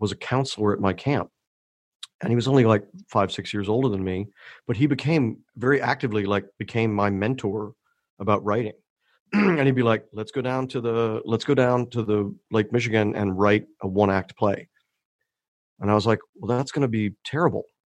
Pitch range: 105-135 Hz